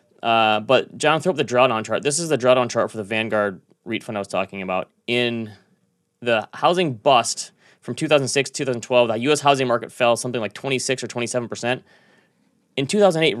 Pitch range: 115-145 Hz